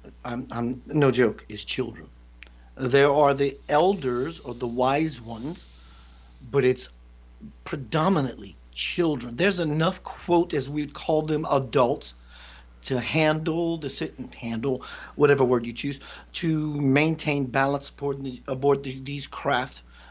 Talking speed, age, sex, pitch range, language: 135 wpm, 50-69, male, 125-150 Hz, English